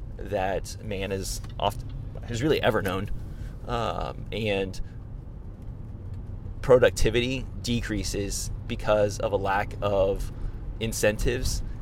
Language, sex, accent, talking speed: English, male, American, 90 wpm